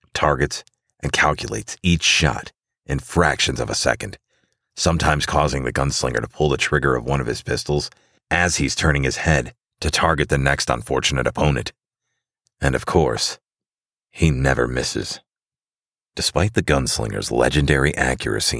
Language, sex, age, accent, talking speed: English, male, 40-59, American, 145 wpm